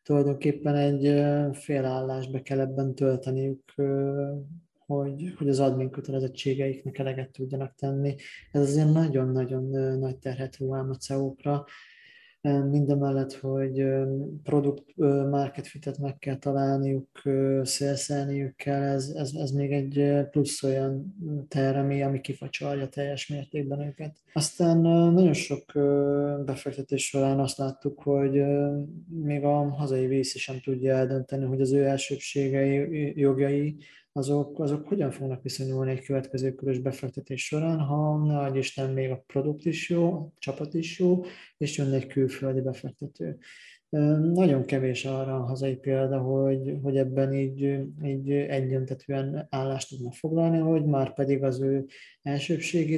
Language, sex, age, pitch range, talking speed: Hungarian, male, 20-39, 135-145 Hz, 125 wpm